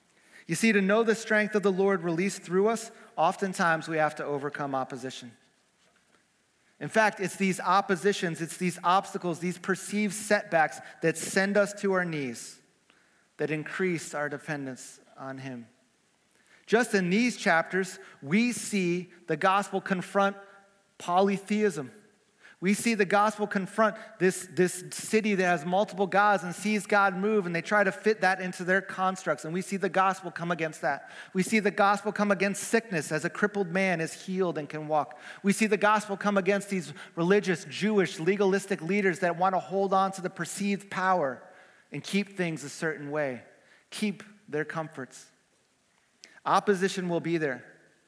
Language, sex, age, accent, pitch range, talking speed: English, male, 30-49, American, 160-200 Hz, 165 wpm